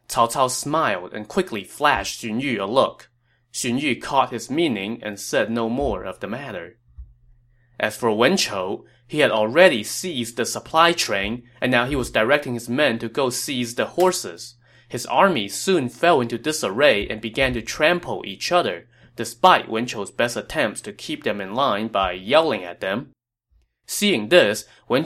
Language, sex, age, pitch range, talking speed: English, male, 20-39, 110-145 Hz, 175 wpm